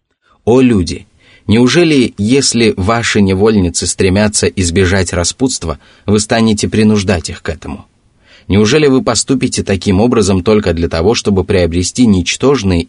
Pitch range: 90-115 Hz